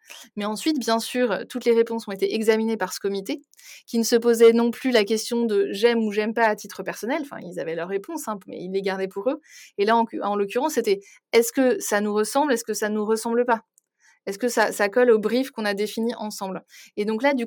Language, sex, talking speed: French, female, 255 wpm